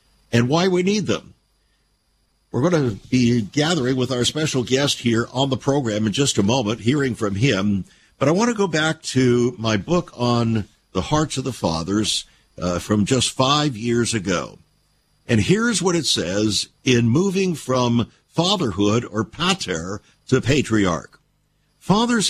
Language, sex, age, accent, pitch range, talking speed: English, male, 60-79, American, 110-155 Hz, 160 wpm